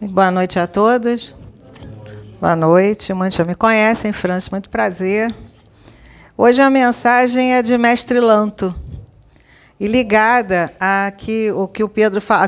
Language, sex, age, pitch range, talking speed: Portuguese, female, 50-69, 195-255 Hz, 140 wpm